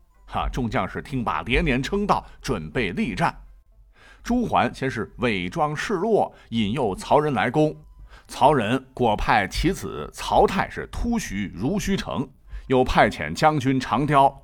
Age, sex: 50-69, male